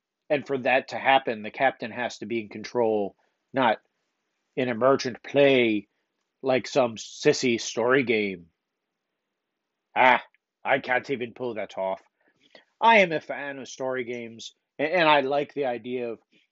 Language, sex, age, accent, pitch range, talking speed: English, male, 40-59, American, 120-155 Hz, 150 wpm